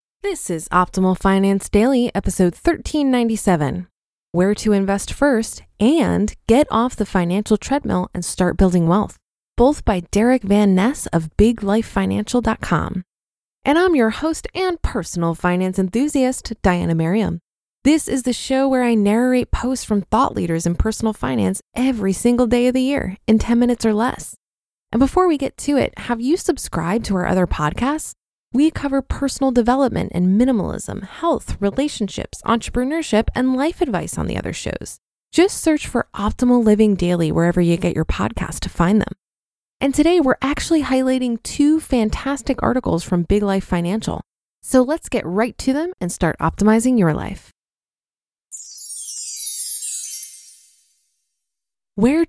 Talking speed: 150 wpm